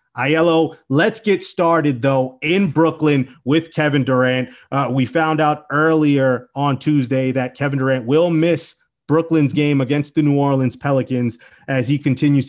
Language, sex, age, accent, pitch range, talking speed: English, male, 30-49, American, 135-165 Hz, 155 wpm